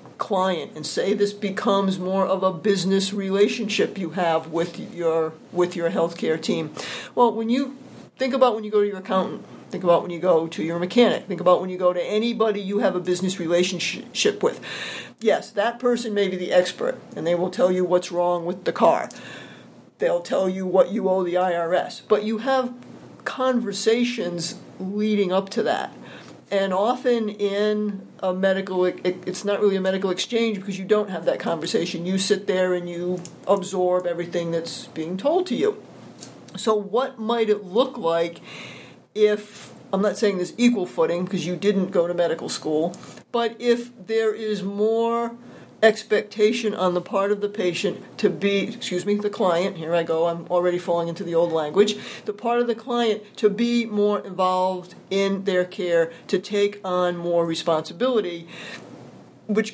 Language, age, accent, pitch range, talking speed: English, 50-69, American, 180-220 Hz, 180 wpm